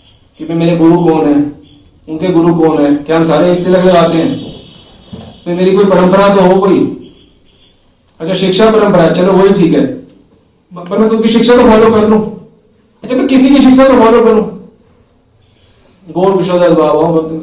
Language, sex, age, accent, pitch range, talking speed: Hindi, male, 40-59, native, 145-200 Hz, 160 wpm